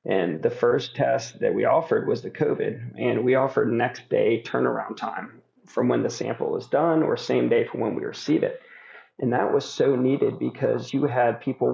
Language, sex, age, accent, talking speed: English, male, 40-59, American, 205 wpm